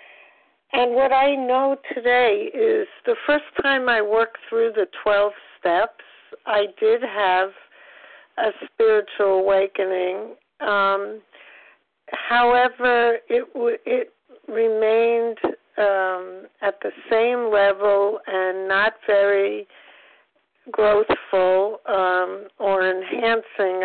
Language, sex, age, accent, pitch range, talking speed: English, female, 60-79, American, 195-255 Hz, 95 wpm